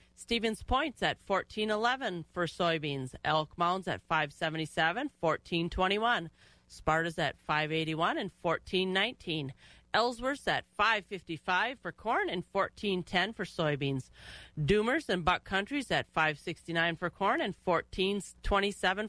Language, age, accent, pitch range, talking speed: English, 40-59, American, 160-200 Hz, 140 wpm